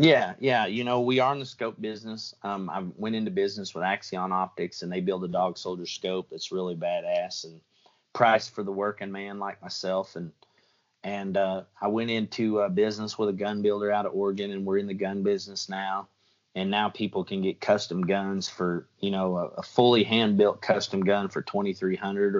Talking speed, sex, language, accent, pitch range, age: 205 wpm, male, English, American, 95-115 Hz, 30-49